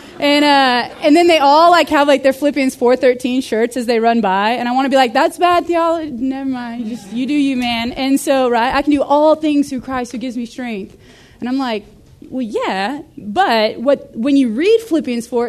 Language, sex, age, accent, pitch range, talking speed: English, female, 20-39, American, 215-280 Hz, 230 wpm